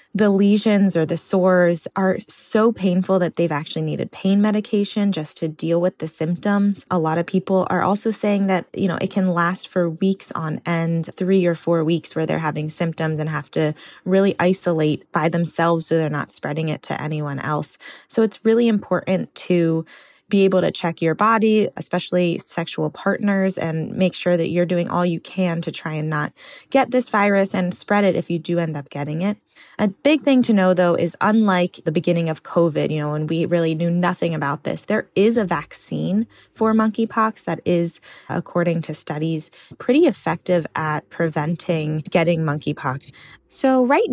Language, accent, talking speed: English, American, 190 wpm